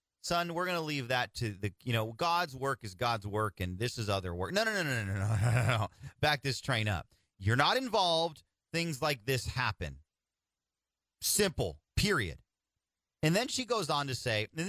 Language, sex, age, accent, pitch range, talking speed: English, male, 30-49, American, 105-170 Hz, 210 wpm